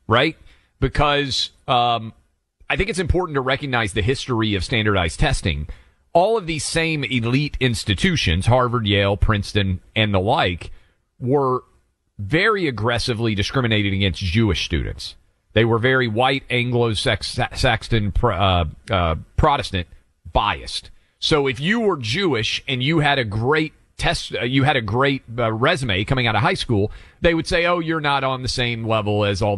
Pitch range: 105-145 Hz